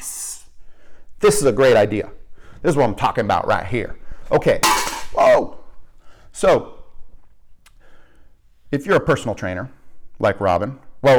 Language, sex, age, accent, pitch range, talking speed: English, male, 40-59, American, 95-125 Hz, 130 wpm